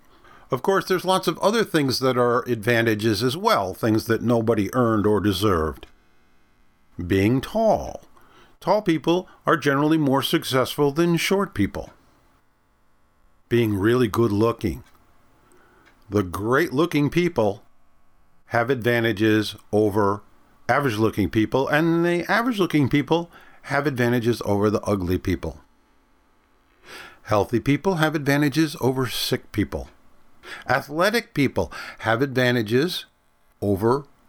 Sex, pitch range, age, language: male, 110-165 Hz, 50-69, English